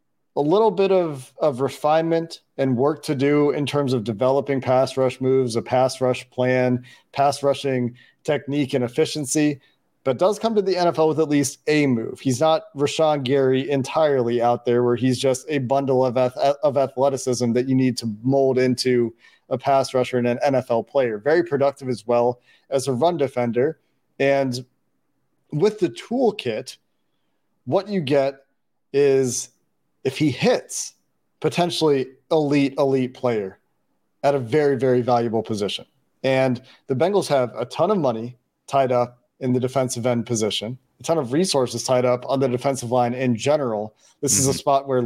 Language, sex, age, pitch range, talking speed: English, male, 40-59, 125-145 Hz, 170 wpm